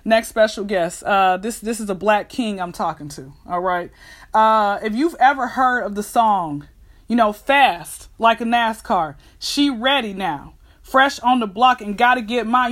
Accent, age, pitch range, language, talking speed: American, 30-49, 220-285 Hz, English, 195 wpm